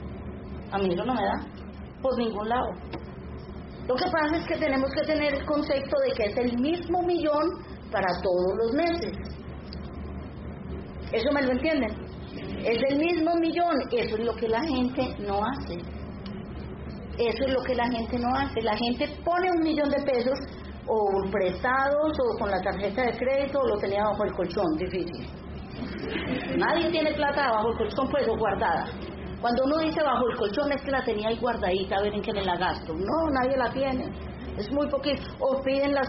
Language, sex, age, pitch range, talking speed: Spanish, female, 30-49, 215-290 Hz, 185 wpm